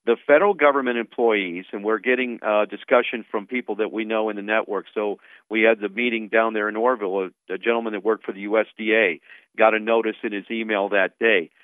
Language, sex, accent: English, male, American